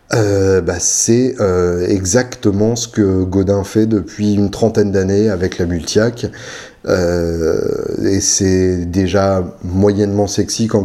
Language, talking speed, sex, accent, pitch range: French, 120 wpm, male, French, 90-110 Hz